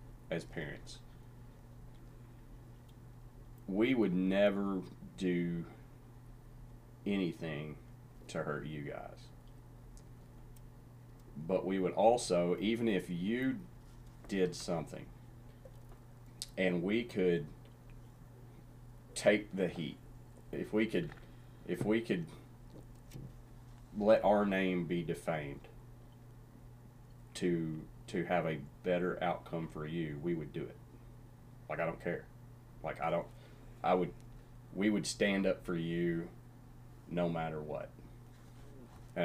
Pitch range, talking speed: 90-120 Hz, 105 wpm